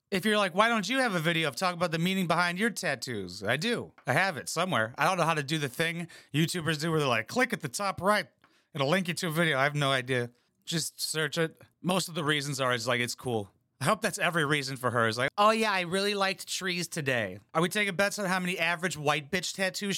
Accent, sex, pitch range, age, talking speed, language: American, male, 125-180 Hz, 30-49, 270 wpm, English